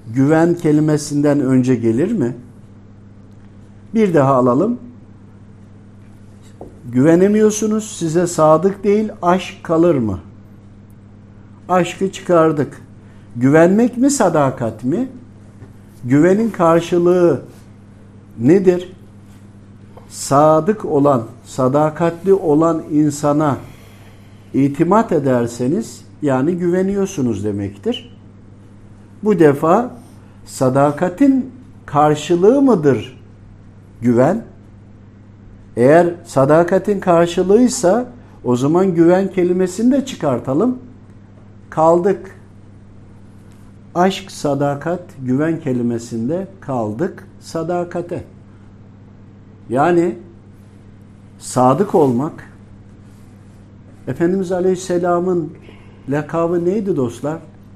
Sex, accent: male, native